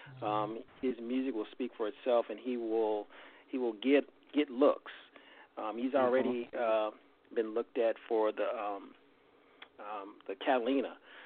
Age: 40-59